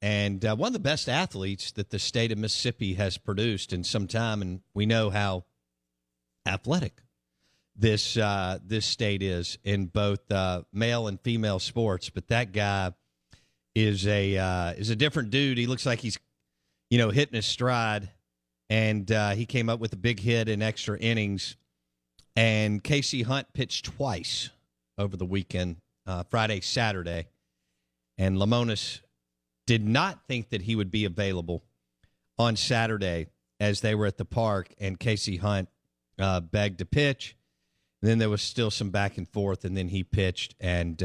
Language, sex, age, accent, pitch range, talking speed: English, male, 50-69, American, 90-115 Hz, 170 wpm